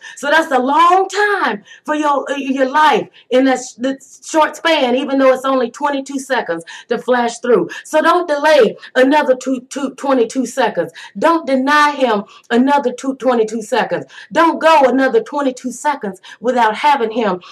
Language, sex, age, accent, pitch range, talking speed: English, female, 30-49, American, 220-275 Hz, 160 wpm